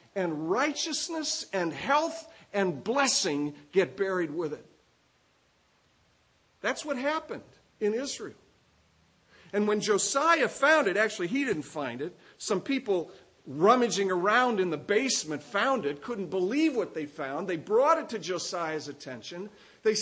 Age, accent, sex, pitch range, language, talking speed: 50-69, American, male, 170-250 Hz, English, 140 wpm